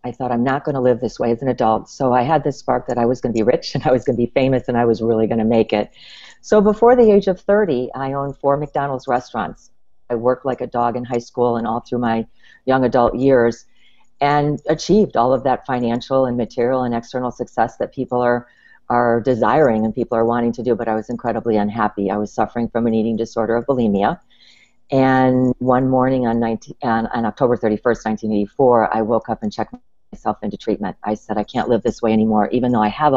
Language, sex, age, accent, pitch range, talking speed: English, female, 50-69, American, 115-135 Hz, 235 wpm